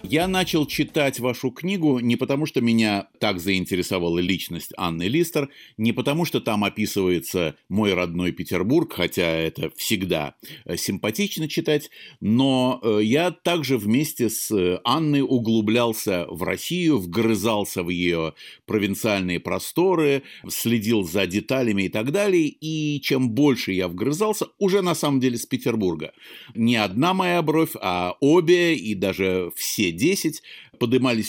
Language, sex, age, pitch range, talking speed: Russian, male, 50-69, 100-155 Hz, 130 wpm